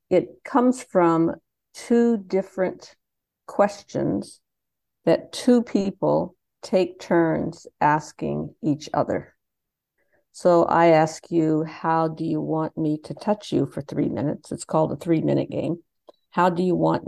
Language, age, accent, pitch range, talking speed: Dutch, 50-69, American, 150-180 Hz, 135 wpm